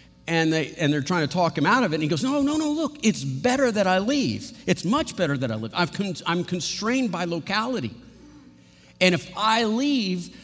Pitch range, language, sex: 145-200 Hz, English, male